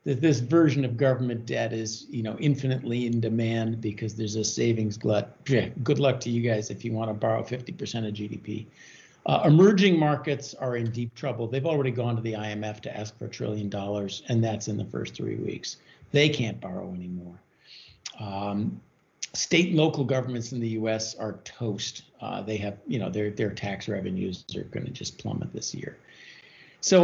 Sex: male